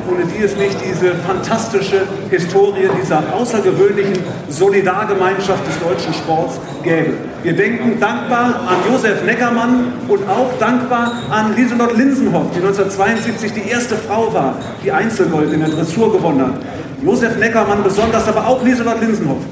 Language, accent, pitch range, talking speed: German, German, 190-230 Hz, 140 wpm